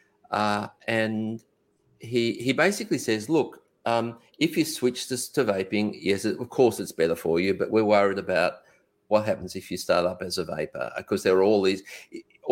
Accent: Australian